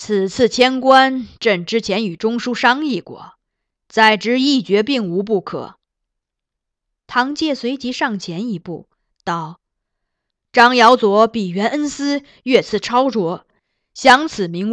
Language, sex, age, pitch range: Chinese, female, 20-39, 220-280 Hz